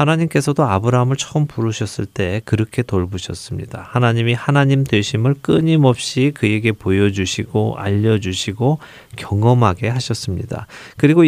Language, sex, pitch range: Korean, male, 100-135 Hz